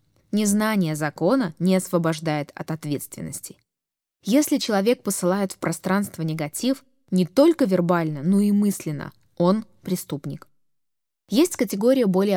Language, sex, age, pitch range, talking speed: Russian, female, 20-39, 160-205 Hz, 110 wpm